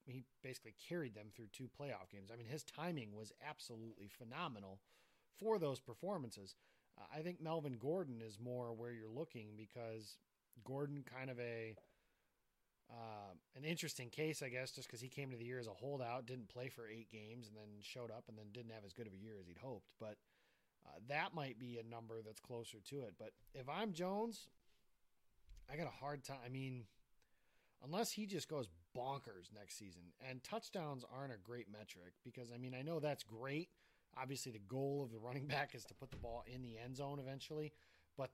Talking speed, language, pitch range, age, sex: 205 wpm, English, 115-145 Hz, 30-49, male